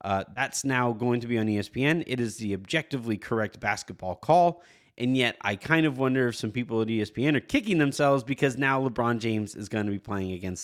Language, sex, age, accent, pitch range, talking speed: English, male, 30-49, American, 115-155 Hz, 220 wpm